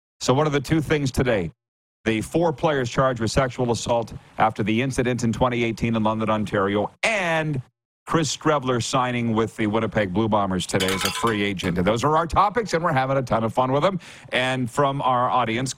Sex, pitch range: male, 110-145 Hz